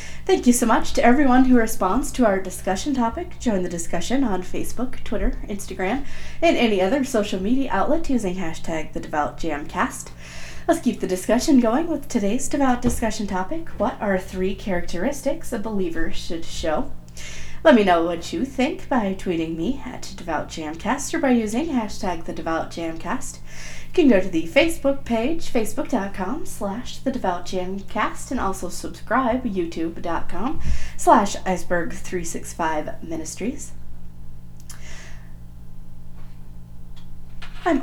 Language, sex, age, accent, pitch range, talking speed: English, female, 30-49, American, 165-245 Hz, 125 wpm